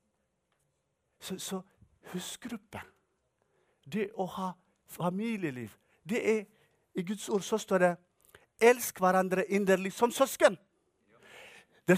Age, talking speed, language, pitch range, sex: 50-69, 110 wpm, English, 160-240 Hz, male